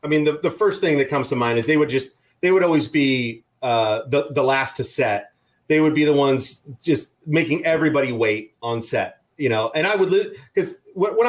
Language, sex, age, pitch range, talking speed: English, male, 30-49, 115-155 Hz, 225 wpm